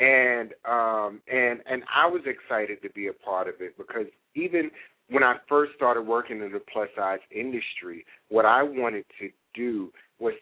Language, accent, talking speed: English, American, 180 wpm